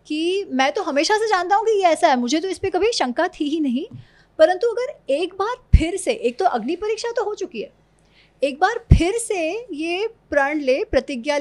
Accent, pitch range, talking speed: native, 250-360 Hz, 220 wpm